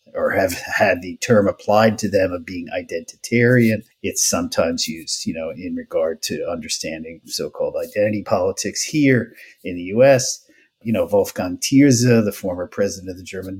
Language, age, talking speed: English, 50-69, 165 wpm